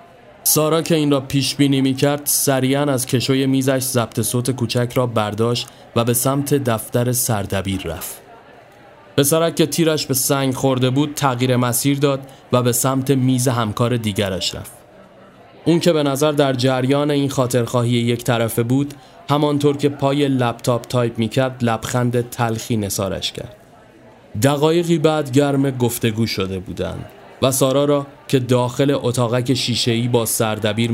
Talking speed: 145 wpm